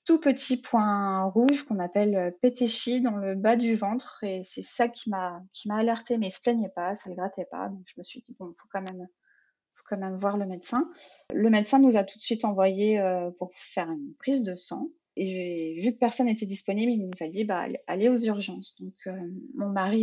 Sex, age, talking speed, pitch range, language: female, 30-49, 230 wpm, 185-235 Hz, French